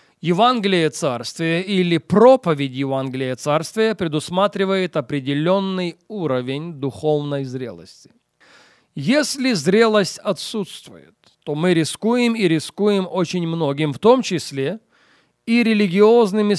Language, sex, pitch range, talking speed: Russian, male, 150-200 Hz, 95 wpm